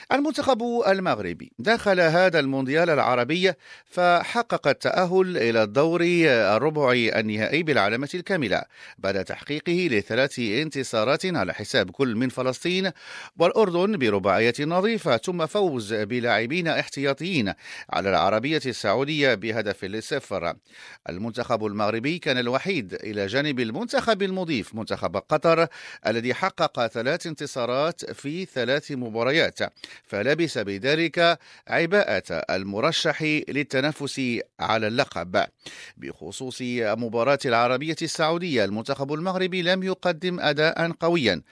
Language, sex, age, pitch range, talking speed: English, male, 50-69, 115-175 Hz, 100 wpm